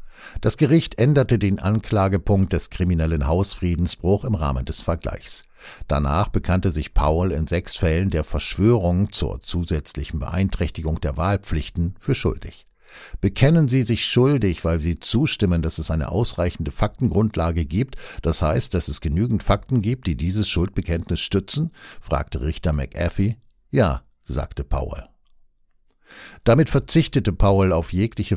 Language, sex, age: German, male, 60-79